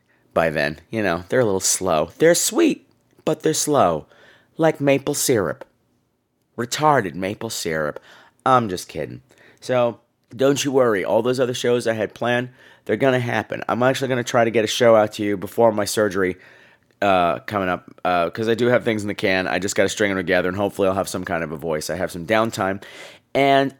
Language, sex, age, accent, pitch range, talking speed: English, male, 30-49, American, 100-135 Hz, 210 wpm